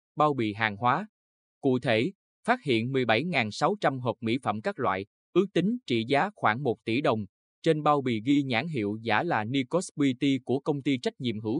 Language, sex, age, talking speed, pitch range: Vietnamese, male, 20-39, 195 wpm, 110-150 Hz